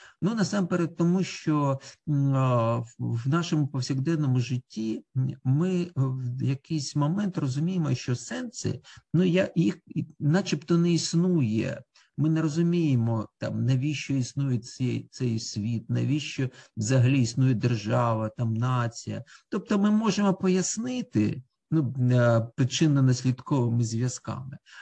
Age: 50-69